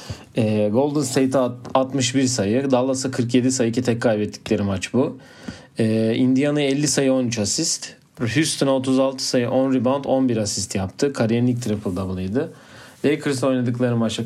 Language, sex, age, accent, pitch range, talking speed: Turkish, male, 40-59, native, 110-135 Hz, 135 wpm